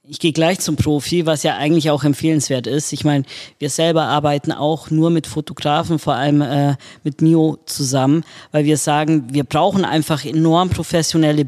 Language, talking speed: German, 180 wpm